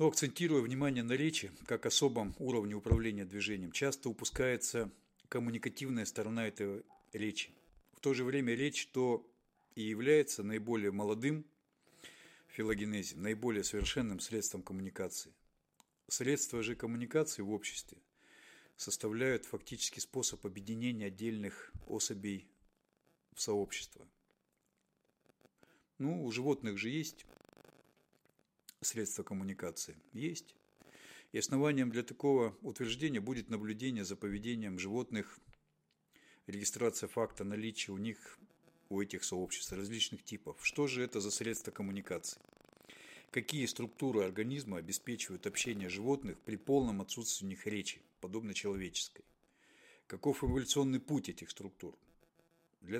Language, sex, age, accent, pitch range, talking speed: Russian, male, 50-69, native, 105-135 Hz, 110 wpm